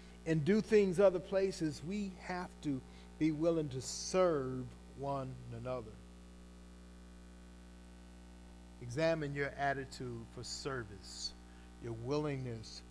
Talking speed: 100 wpm